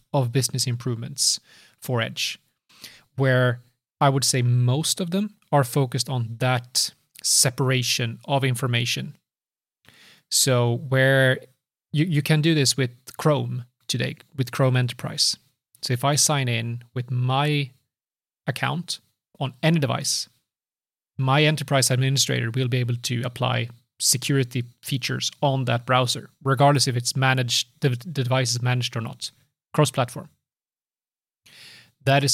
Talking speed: 130 wpm